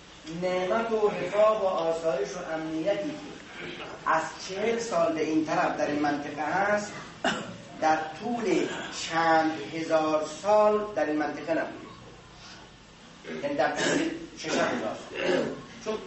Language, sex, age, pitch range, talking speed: Persian, male, 40-59, 165-235 Hz, 115 wpm